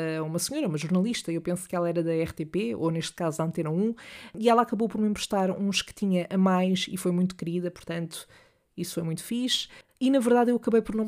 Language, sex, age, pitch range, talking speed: Portuguese, female, 20-39, 175-205 Hz, 240 wpm